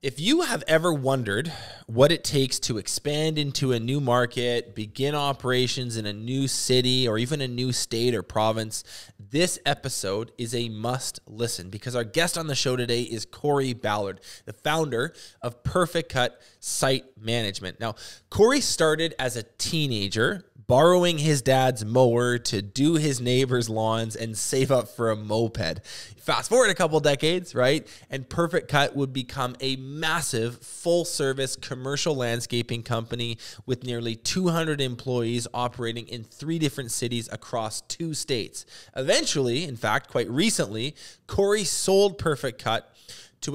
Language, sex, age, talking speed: English, male, 20-39, 150 wpm